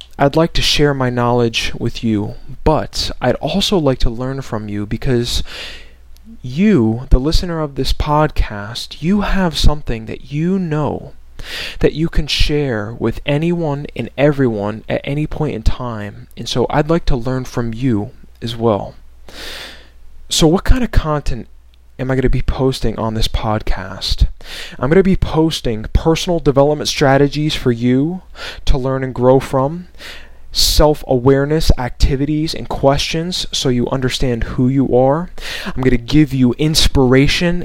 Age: 20-39